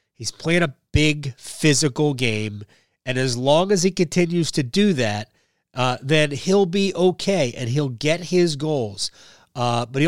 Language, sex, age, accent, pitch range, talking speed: English, male, 30-49, American, 120-170 Hz, 165 wpm